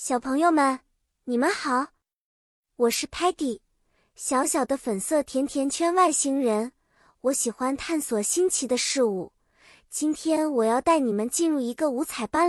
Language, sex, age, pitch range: Chinese, male, 20-39, 245-325 Hz